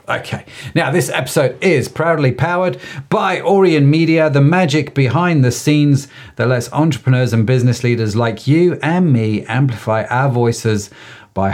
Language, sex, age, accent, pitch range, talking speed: English, male, 40-59, British, 110-145 Hz, 150 wpm